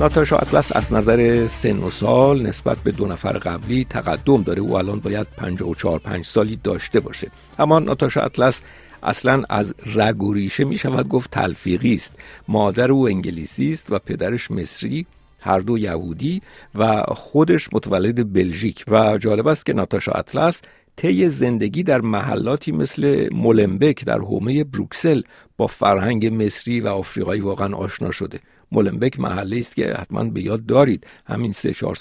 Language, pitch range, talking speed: Persian, 100-125 Hz, 150 wpm